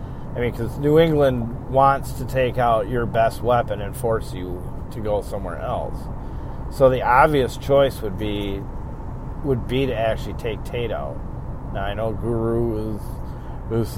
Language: English